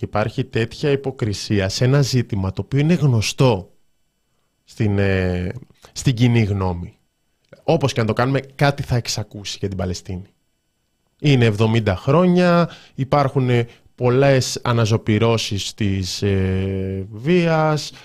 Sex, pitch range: male, 105-140 Hz